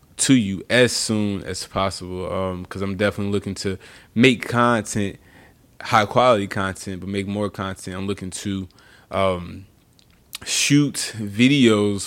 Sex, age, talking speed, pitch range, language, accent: male, 20-39, 135 wpm, 95-105 Hz, English, American